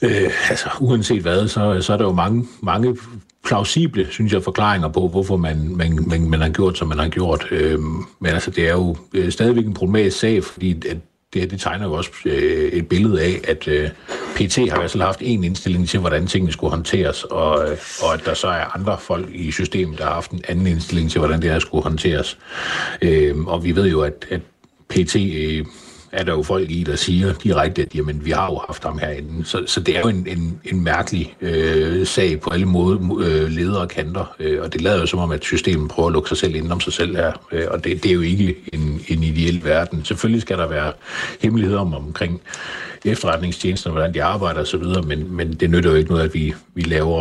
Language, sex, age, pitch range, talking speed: Danish, male, 60-79, 80-95 Hz, 230 wpm